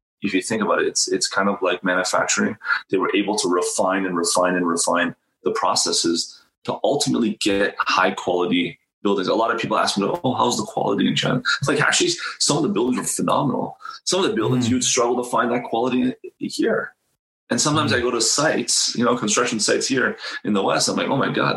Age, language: 30-49, English